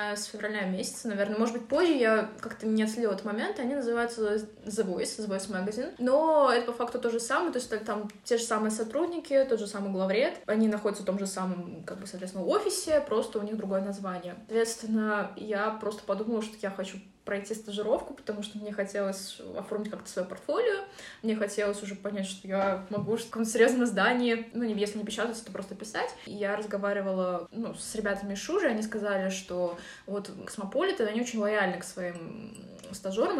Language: Russian